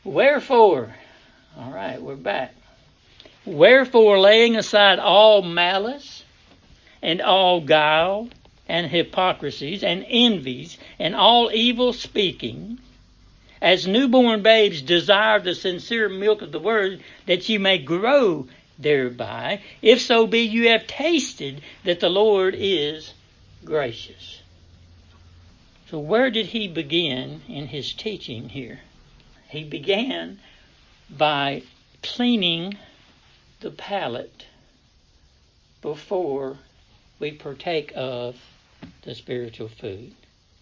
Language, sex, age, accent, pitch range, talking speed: English, male, 60-79, American, 130-215 Hz, 100 wpm